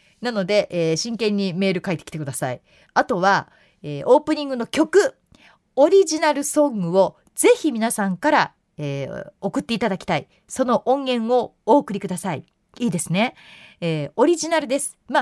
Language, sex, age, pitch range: Japanese, female, 30-49, 180-280 Hz